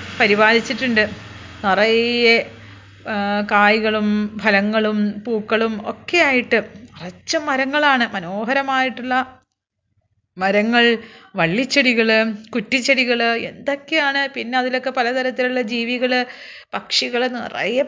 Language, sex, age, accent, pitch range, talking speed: Malayalam, female, 30-49, native, 215-270 Hz, 65 wpm